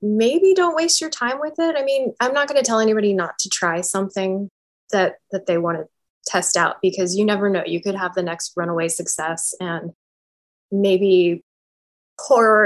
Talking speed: 190 wpm